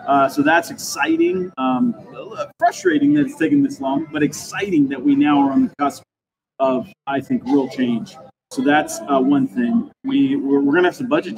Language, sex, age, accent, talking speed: English, male, 30-49, American, 190 wpm